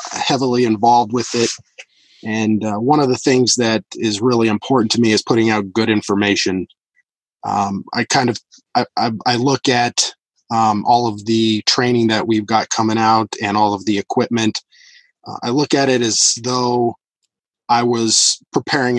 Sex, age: male, 20-39